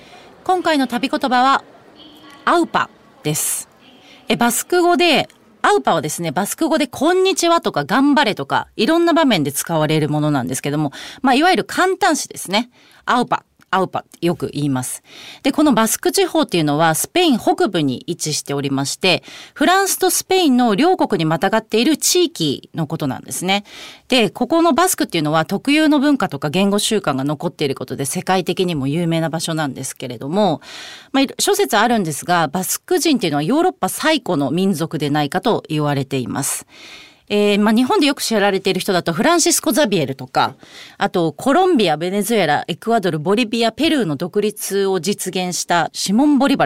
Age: 40-59